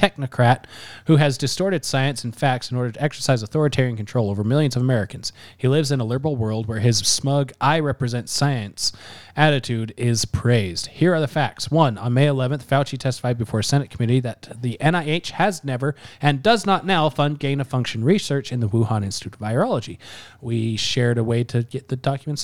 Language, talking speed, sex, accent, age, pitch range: English, 195 wpm, male, American, 20-39, 115-155 Hz